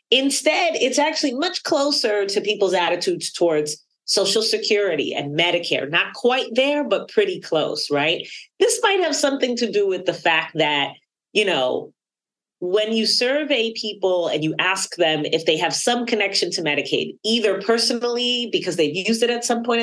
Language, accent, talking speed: English, American, 170 wpm